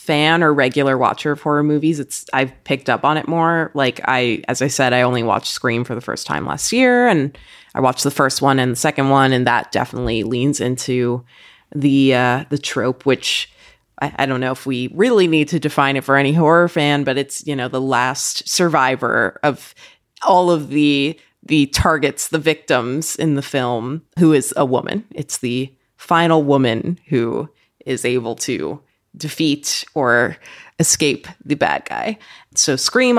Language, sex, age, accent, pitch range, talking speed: English, female, 20-39, American, 130-160 Hz, 185 wpm